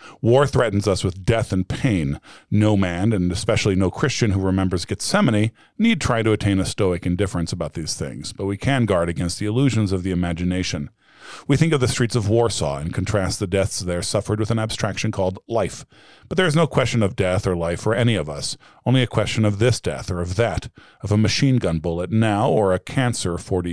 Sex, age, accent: male, 40-59, American